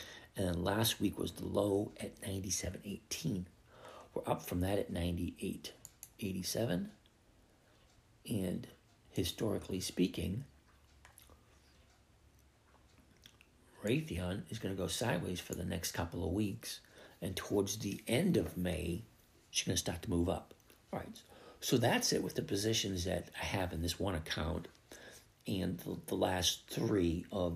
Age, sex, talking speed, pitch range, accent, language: 60-79, male, 140 wpm, 90-105 Hz, American, English